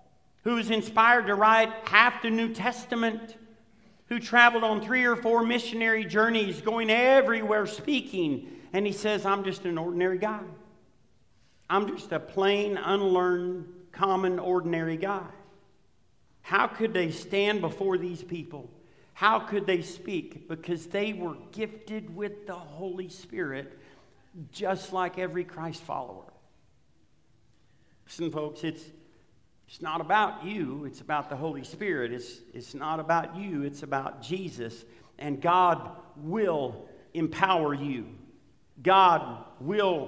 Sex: male